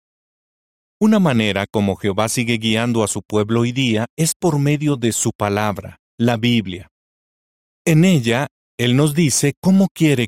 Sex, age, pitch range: male, 40-59, 105-140 Hz